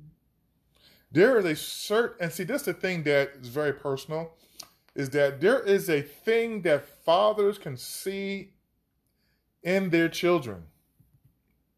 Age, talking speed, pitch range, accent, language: 20-39, 140 wpm, 130-175 Hz, American, English